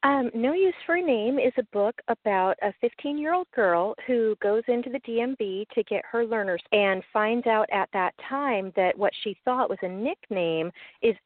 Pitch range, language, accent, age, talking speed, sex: 160-210 Hz, English, American, 40-59, 190 wpm, female